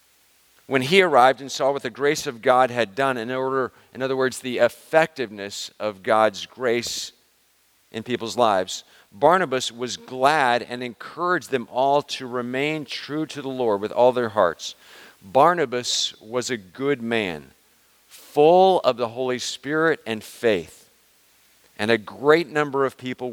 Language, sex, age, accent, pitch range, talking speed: English, male, 50-69, American, 120-145 Hz, 155 wpm